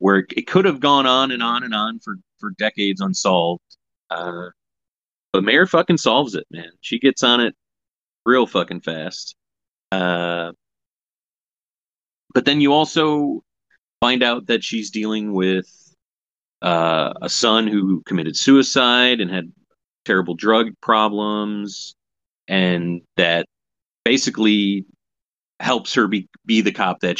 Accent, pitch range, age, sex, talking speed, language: American, 85-110 Hz, 30-49, male, 130 wpm, English